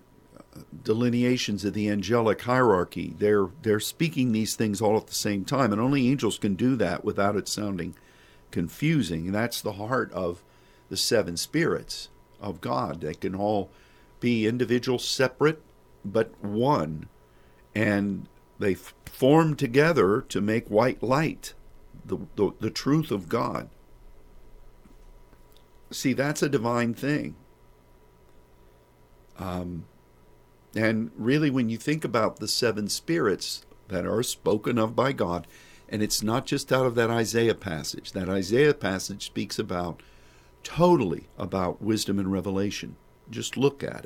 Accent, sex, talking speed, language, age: American, male, 140 wpm, English, 50-69